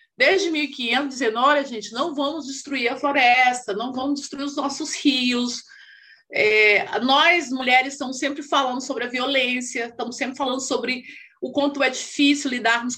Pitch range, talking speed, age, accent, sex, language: 245-320 Hz, 155 wpm, 30-49, Brazilian, female, Portuguese